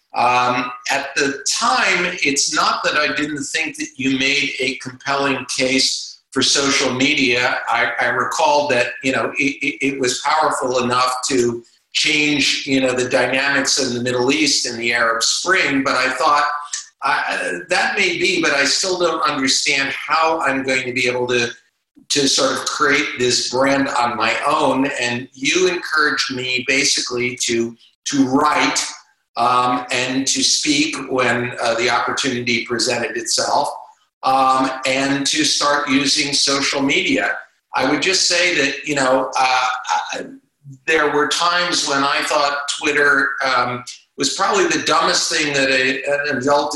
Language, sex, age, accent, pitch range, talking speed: English, male, 50-69, American, 125-145 Hz, 155 wpm